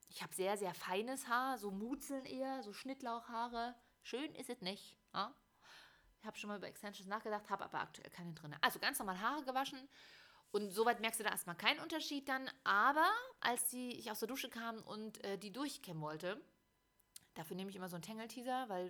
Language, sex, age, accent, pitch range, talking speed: German, female, 30-49, German, 195-245 Hz, 195 wpm